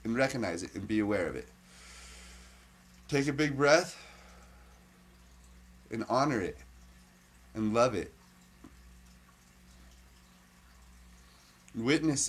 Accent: American